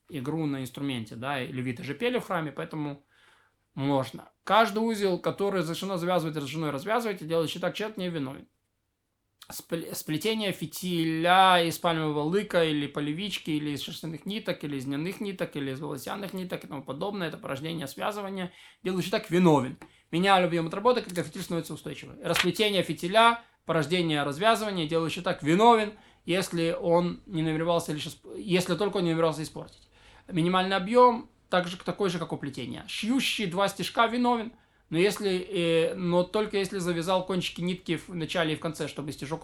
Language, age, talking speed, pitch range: Russian, 20-39, 160 wpm, 155-190 Hz